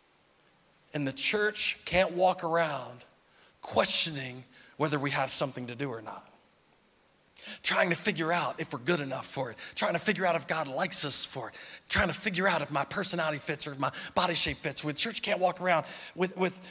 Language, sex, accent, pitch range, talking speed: English, male, American, 150-250 Hz, 200 wpm